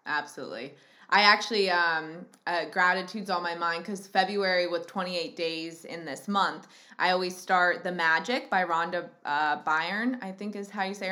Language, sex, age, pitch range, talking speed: English, female, 20-39, 170-195 Hz, 180 wpm